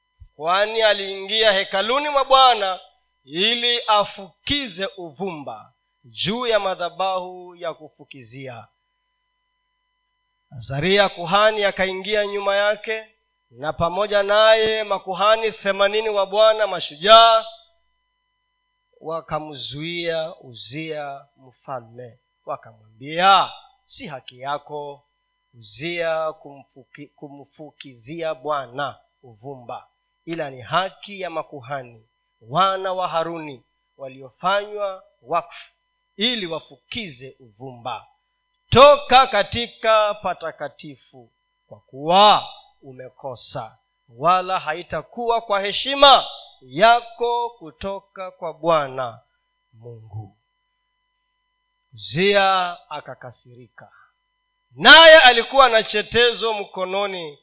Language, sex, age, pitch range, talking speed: Swahili, male, 40-59, 145-235 Hz, 75 wpm